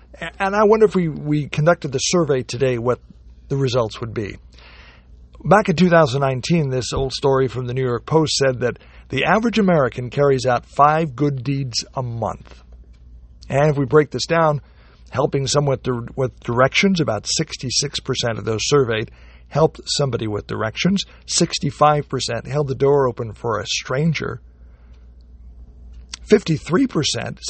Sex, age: male, 50-69